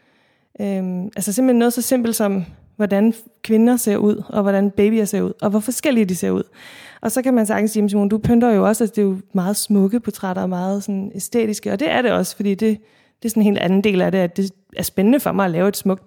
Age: 20-39